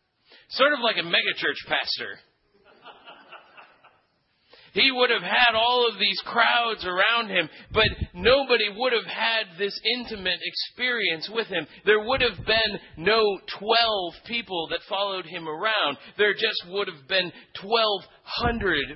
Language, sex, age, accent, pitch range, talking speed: English, male, 40-59, American, 175-215 Hz, 135 wpm